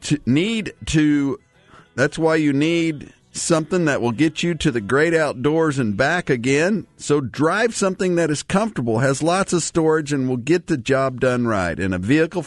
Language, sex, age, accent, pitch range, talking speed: English, male, 50-69, American, 130-170 Hz, 190 wpm